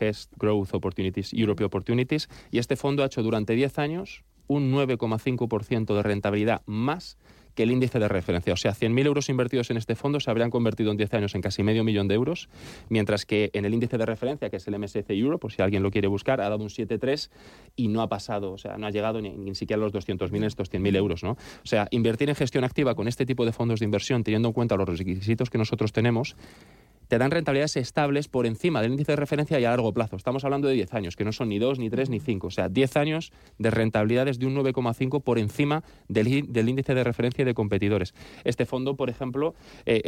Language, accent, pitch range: Spanish, Spanish, 105-130 Hz